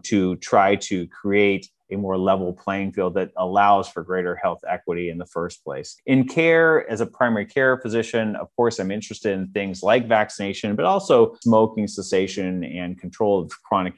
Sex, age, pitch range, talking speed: male, 30-49, 95-115 Hz, 180 wpm